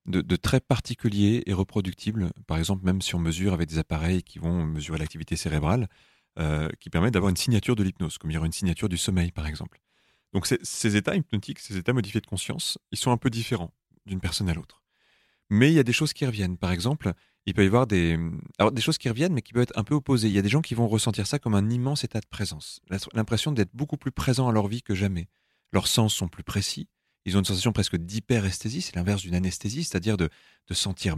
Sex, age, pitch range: male, 30-49, 90-115 Hz